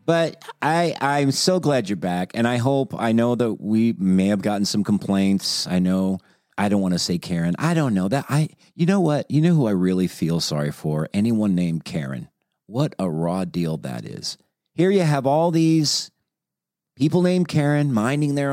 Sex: male